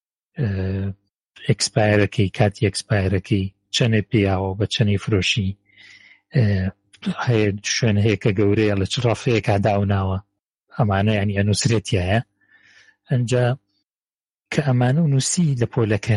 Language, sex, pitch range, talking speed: Arabic, male, 100-125 Hz, 115 wpm